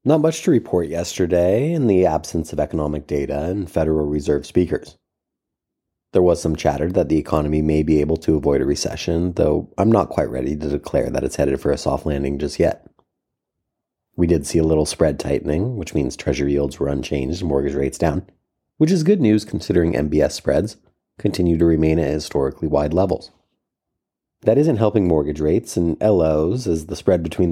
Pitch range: 75-90 Hz